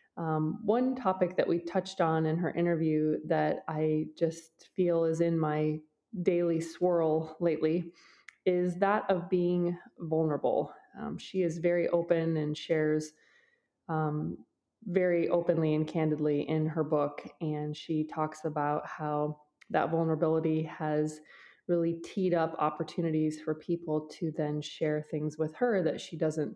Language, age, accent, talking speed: English, 20-39, American, 140 wpm